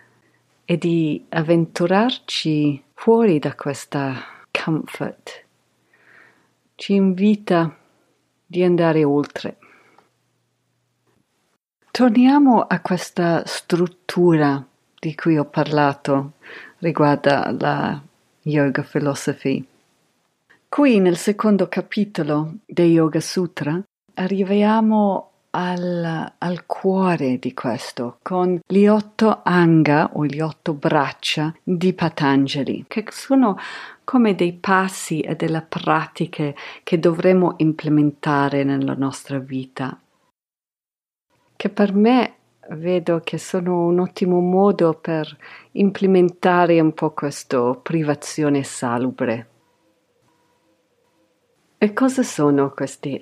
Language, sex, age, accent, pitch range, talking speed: Italian, female, 50-69, native, 145-185 Hz, 90 wpm